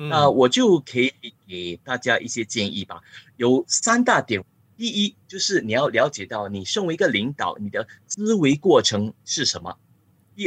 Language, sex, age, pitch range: Chinese, male, 30-49, 110-155 Hz